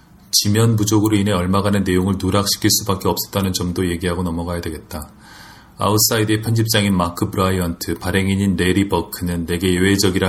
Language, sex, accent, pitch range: Korean, male, native, 85-100 Hz